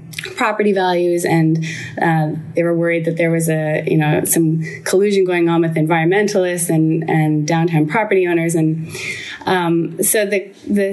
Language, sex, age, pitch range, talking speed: English, female, 20-39, 160-190 Hz, 160 wpm